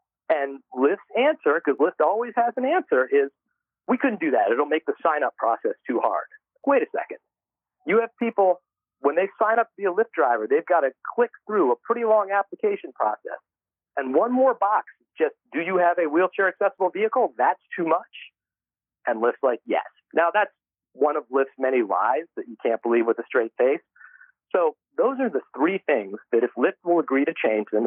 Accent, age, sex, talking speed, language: American, 40-59, male, 200 wpm, English